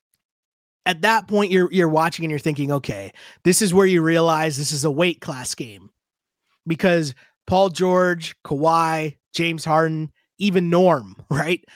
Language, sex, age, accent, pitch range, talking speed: English, male, 30-49, American, 150-190 Hz, 155 wpm